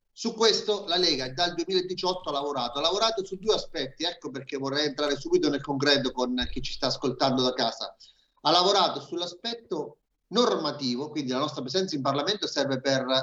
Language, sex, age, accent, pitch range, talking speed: Italian, male, 40-59, native, 130-185 Hz, 175 wpm